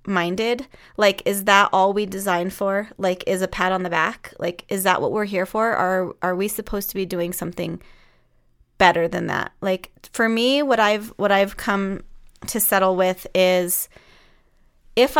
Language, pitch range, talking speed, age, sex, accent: English, 180-210 Hz, 180 wpm, 20-39, female, American